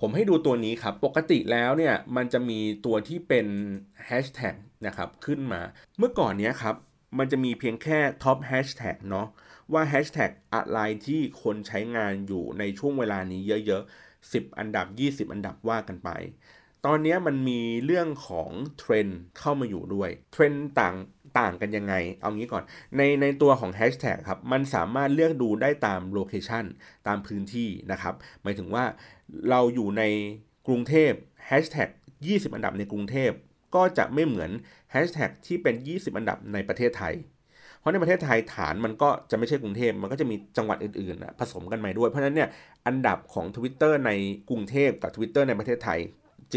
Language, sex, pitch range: Thai, male, 105-140 Hz